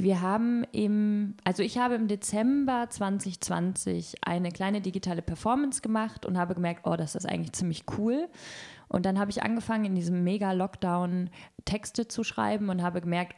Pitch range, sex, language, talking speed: 170-210 Hz, female, German, 165 wpm